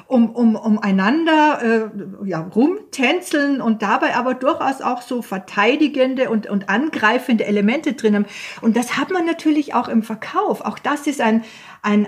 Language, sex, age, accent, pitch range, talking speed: German, female, 50-69, German, 205-275 Hz, 165 wpm